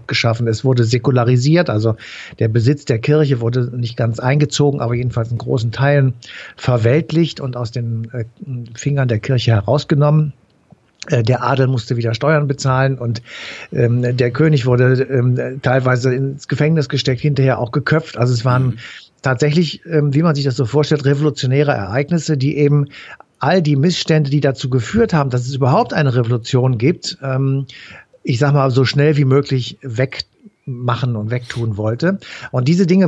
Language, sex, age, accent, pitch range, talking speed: German, male, 60-79, German, 125-145 Hz, 150 wpm